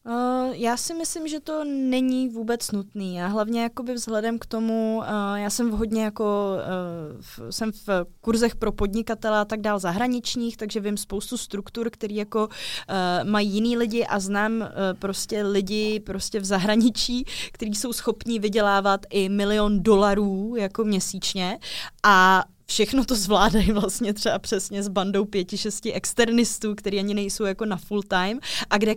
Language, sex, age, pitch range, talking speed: Czech, female, 20-39, 200-230 Hz, 155 wpm